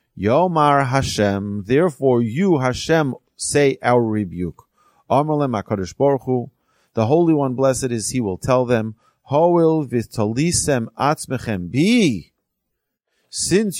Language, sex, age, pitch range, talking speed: English, male, 30-49, 100-135 Hz, 110 wpm